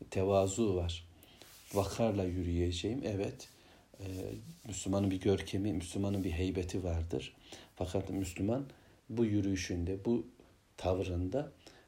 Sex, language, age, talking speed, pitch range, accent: male, Turkish, 60-79, 90 wpm, 95-110 Hz, native